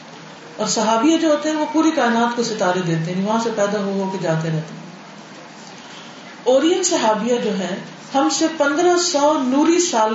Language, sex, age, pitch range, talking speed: Urdu, female, 40-59, 210-270 Hz, 185 wpm